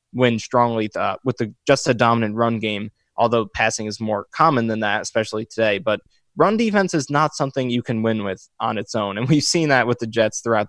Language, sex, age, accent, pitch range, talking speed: English, male, 20-39, American, 110-135 Hz, 225 wpm